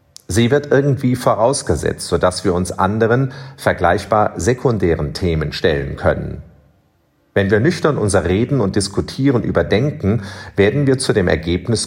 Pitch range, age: 90-130 Hz, 40-59